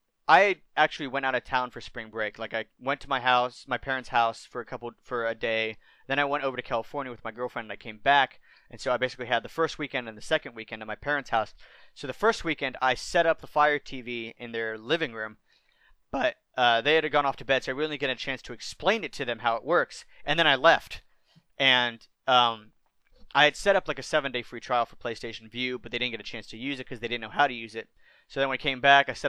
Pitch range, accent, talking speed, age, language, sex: 115-140 Hz, American, 275 wpm, 30-49, English, male